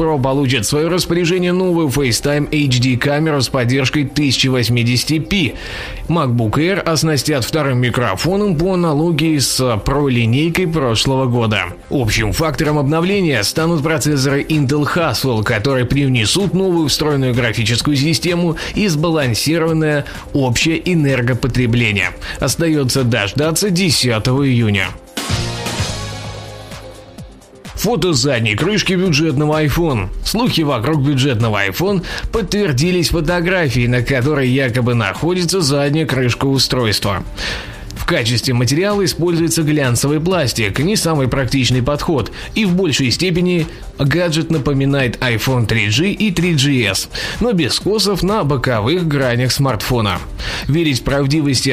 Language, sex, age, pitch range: Russian, male, 20-39, 120-160 Hz